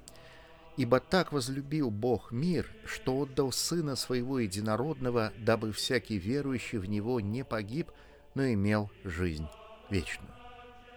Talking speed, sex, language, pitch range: 115 wpm, male, Russian, 105-165 Hz